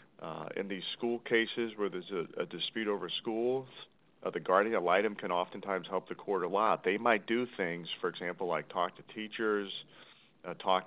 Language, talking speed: English, 200 wpm